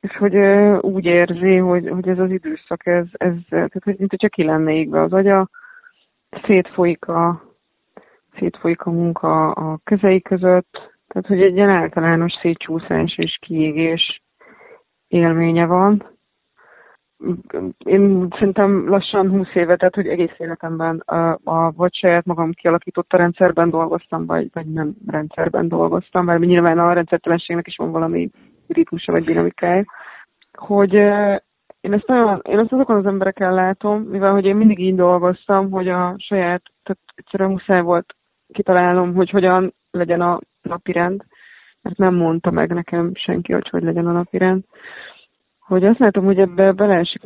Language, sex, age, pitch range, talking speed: Hungarian, female, 20-39, 170-195 Hz, 140 wpm